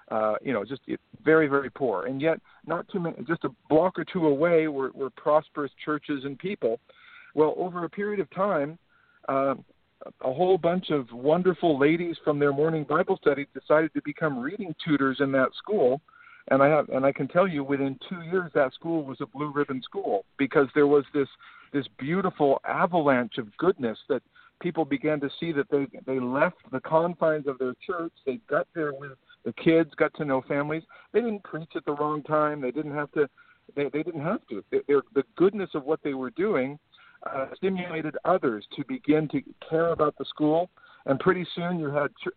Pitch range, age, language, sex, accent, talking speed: 140-170 Hz, 50-69, English, male, American, 200 wpm